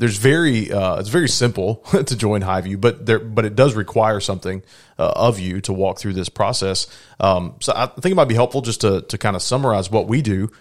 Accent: American